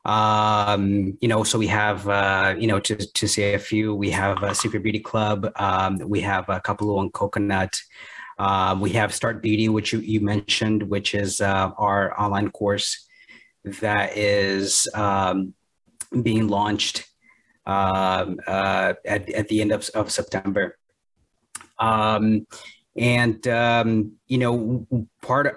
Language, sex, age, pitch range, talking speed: English, male, 30-49, 100-110 Hz, 150 wpm